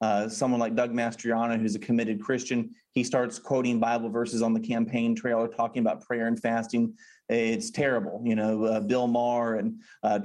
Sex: male